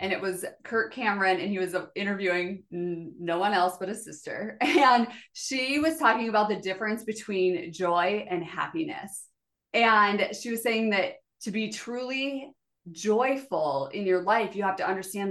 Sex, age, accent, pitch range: female, 20-39, American, 180-220 Hz